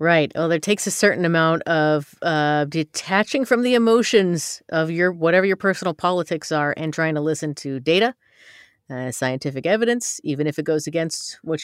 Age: 40-59